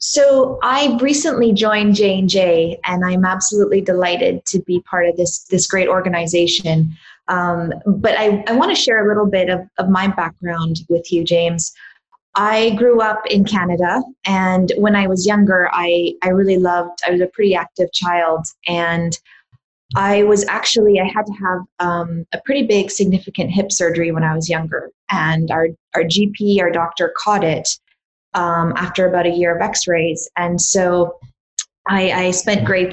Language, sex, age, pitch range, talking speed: English, female, 20-39, 170-200 Hz, 170 wpm